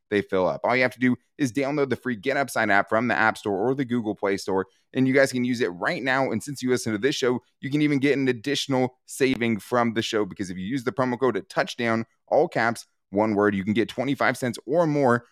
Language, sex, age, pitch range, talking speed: English, male, 20-39, 105-130 Hz, 265 wpm